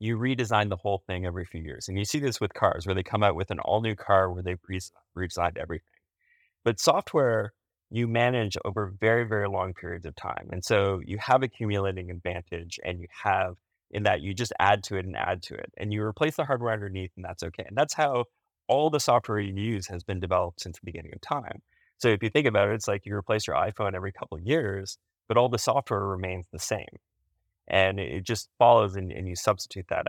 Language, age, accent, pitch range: English, 30-49, American, 95-120 Hz